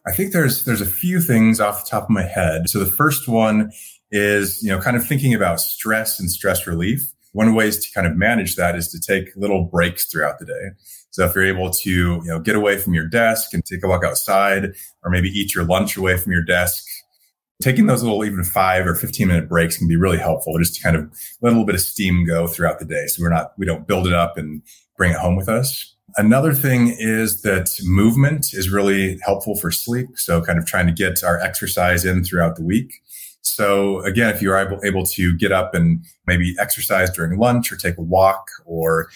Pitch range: 85-105 Hz